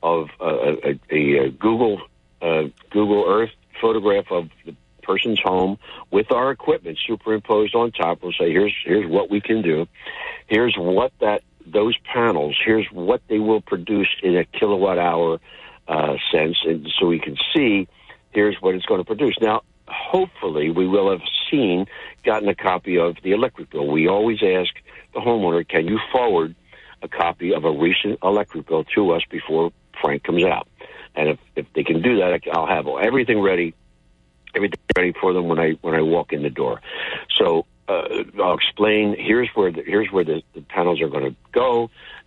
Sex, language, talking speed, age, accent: male, English, 180 wpm, 60-79, American